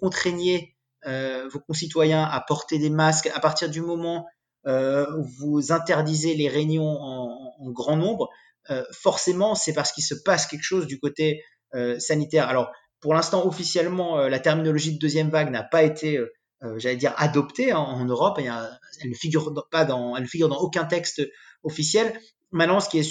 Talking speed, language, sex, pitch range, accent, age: 190 wpm, French, male, 140-170 Hz, French, 30-49